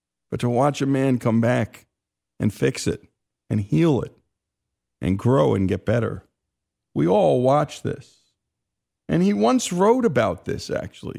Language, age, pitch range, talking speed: English, 50-69, 110-155 Hz, 155 wpm